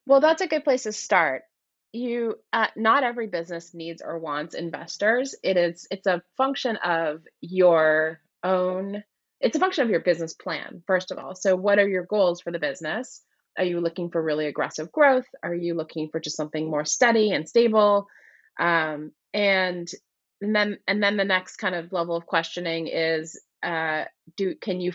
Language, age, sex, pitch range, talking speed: English, 30-49, female, 160-205 Hz, 185 wpm